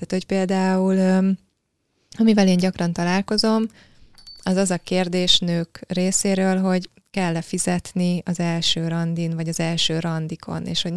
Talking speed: 135 wpm